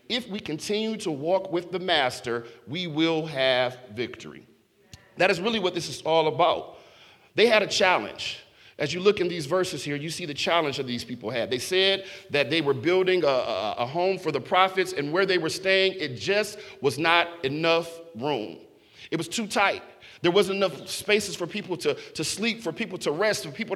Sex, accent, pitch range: male, American, 165-200 Hz